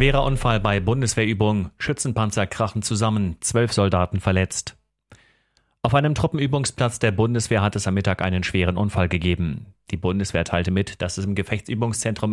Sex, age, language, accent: male, 40-59, German, German